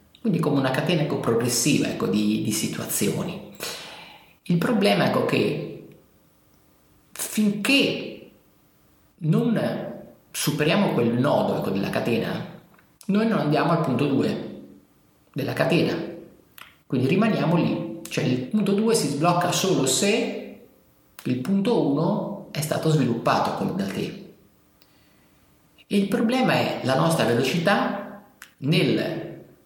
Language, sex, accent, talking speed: Italian, male, native, 115 wpm